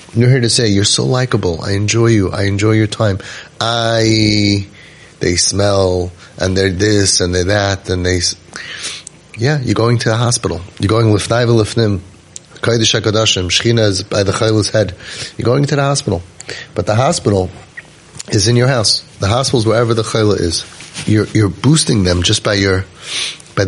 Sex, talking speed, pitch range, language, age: male, 175 wpm, 95-115 Hz, English, 30-49